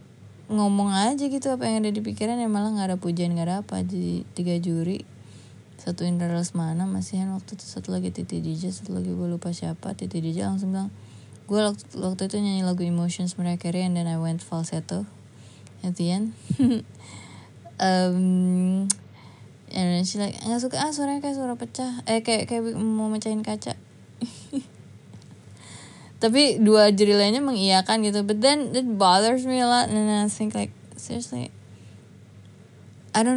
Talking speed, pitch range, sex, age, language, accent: 165 wpm, 165-210 Hz, female, 20-39, Indonesian, native